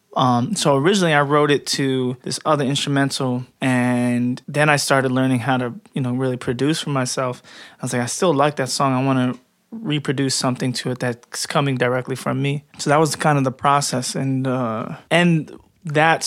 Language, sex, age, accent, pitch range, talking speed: English, male, 20-39, American, 130-150 Hz, 200 wpm